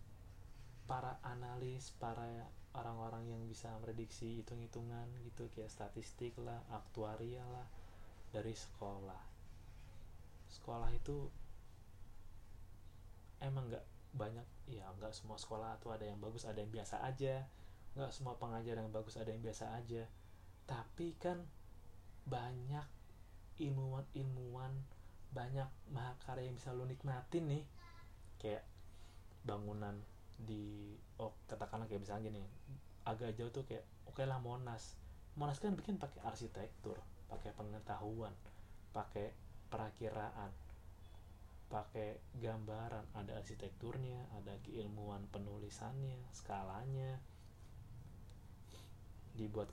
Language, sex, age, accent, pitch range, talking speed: Indonesian, male, 30-49, native, 100-120 Hz, 105 wpm